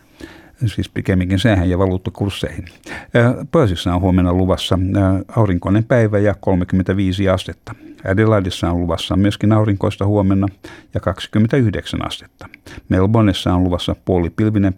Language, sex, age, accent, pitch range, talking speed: Finnish, male, 60-79, native, 90-105 Hz, 100 wpm